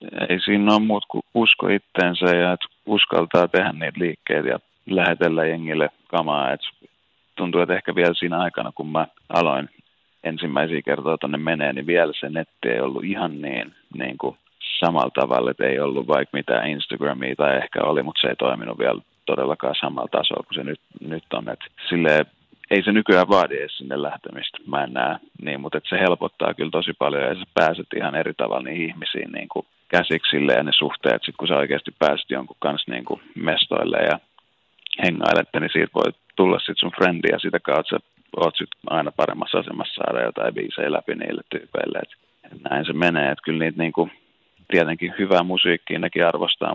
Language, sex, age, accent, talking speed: Finnish, male, 30-49, native, 180 wpm